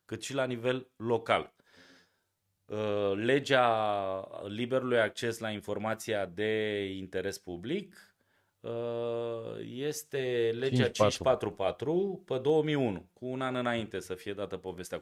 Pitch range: 95-140 Hz